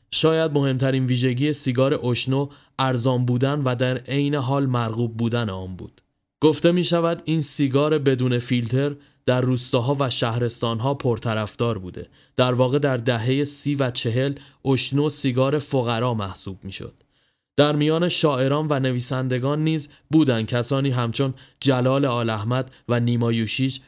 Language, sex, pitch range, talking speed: Persian, male, 125-145 Hz, 140 wpm